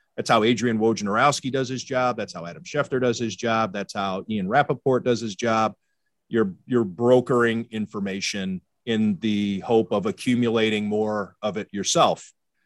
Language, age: English, 40-59